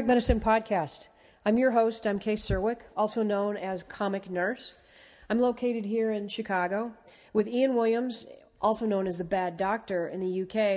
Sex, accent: female, American